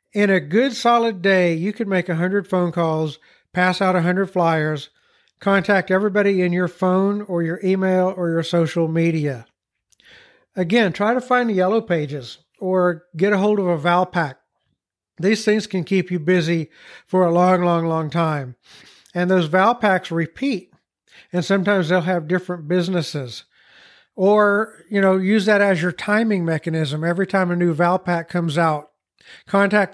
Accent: American